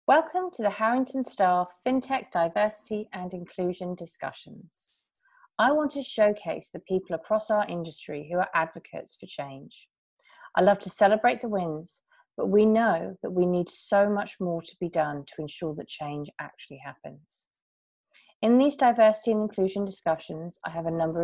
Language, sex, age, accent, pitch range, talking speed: English, female, 30-49, British, 170-220 Hz, 165 wpm